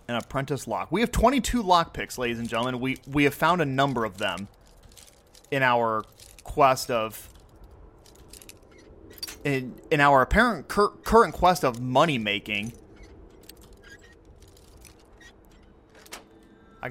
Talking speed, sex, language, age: 115 wpm, male, English, 30-49